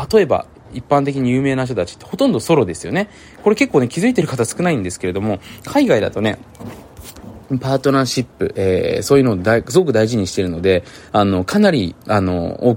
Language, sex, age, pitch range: Japanese, male, 20-39, 95-150 Hz